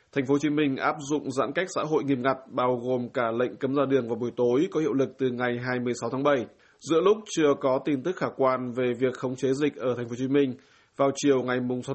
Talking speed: 270 wpm